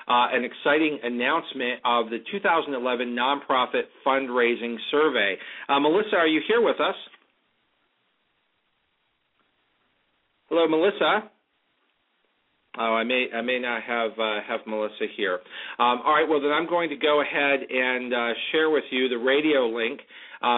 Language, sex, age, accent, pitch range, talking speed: English, male, 40-59, American, 115-140 Hz, 145 wpm